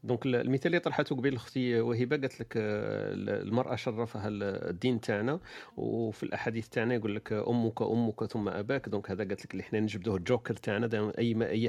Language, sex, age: Arabic, male, 40-59